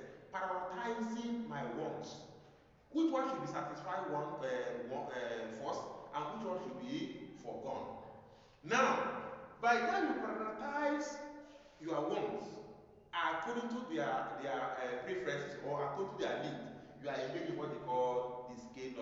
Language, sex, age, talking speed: English, male, 30-49, 145 wpm